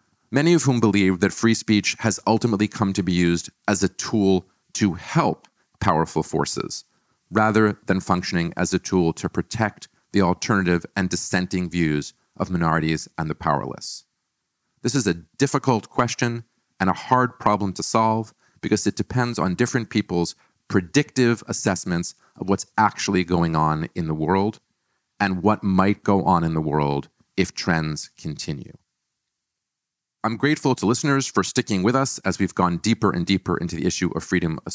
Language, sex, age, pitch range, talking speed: English, male, 40-59, 90-110 Hz, 165 wpm